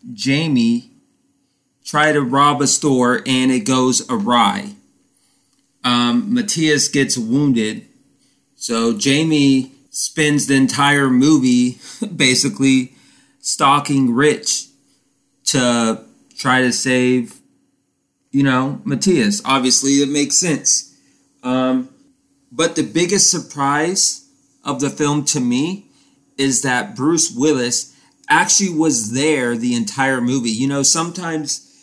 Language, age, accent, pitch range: English, 30-49, American, 135-210 Hz